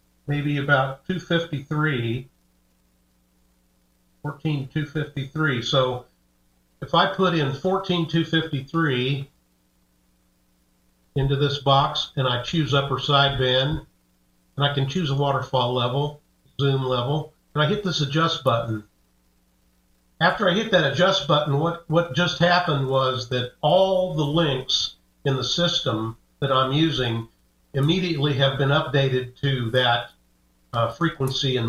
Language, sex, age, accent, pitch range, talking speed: English, male, 50-69, American, 115-150 Hz, 120 wpm